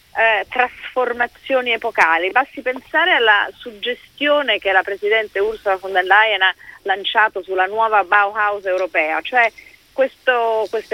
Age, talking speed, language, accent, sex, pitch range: 30-49, 120 wpm, Italian, native, female, 185-265 Hz